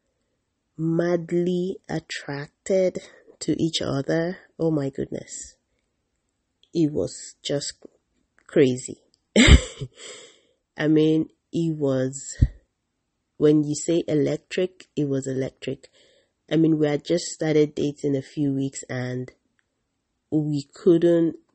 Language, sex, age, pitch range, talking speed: English, female, 30-49, 140-170 Hz, 100 wpm